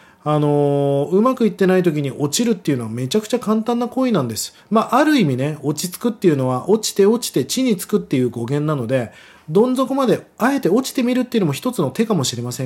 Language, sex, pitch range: Japanese, male, 140-205 Hz